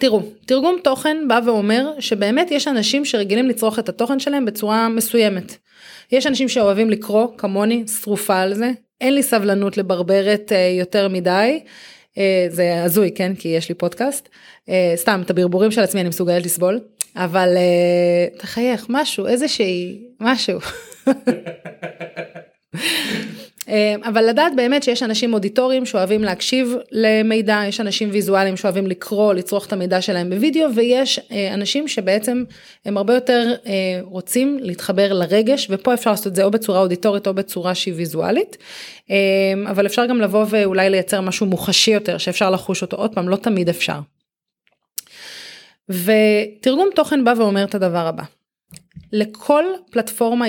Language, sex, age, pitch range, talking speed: Hebrew, female, 20-39, 190-245 Hz, 135 wpm